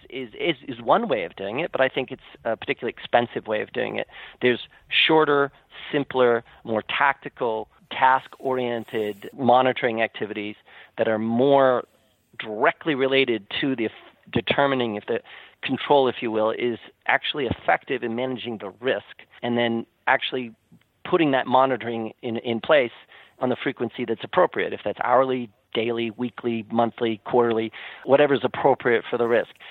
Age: 40-59